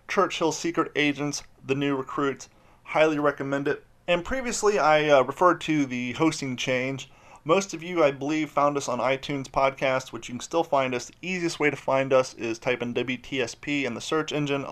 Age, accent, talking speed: 30-49, American, 195 wpm